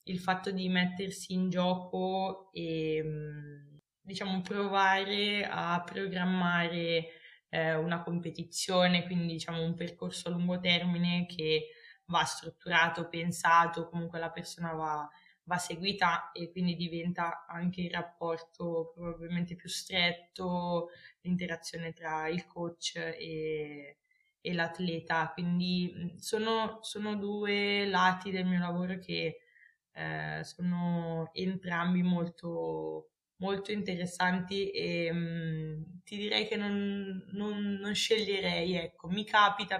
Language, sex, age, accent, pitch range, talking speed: Italian, female, 20-39, native, 170-190 Hz, 105 wpm